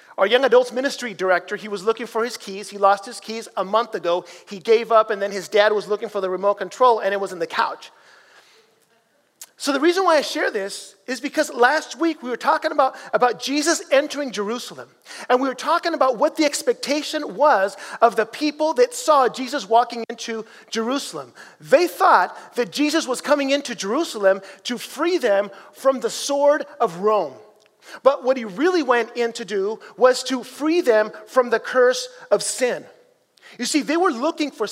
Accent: American